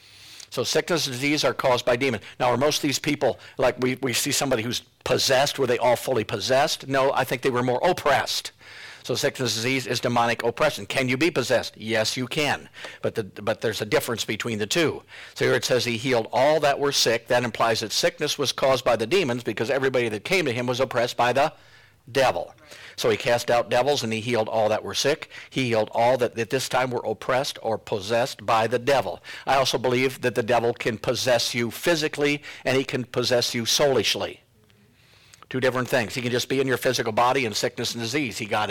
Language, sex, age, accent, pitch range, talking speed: English, male, 50-69, American, 115-135 Hz, 225 wpm